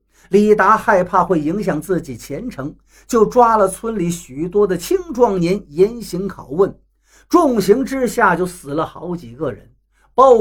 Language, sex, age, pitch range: Chinese, male, 50-69, 165-230 Hz